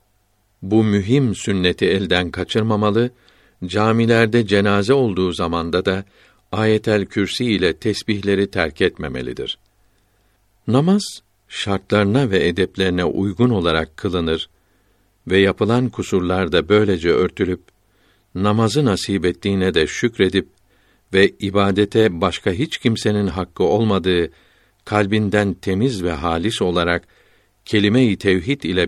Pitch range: 90-105 Hz